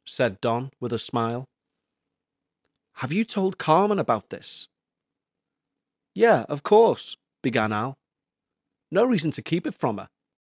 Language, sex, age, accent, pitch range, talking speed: English, male, 30-49, British, 115-145 Hz, 135 wpm